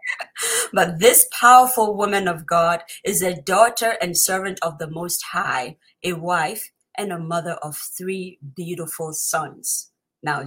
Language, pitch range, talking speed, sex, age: English, 170-210 Hz, 145 wpm, female, 30-49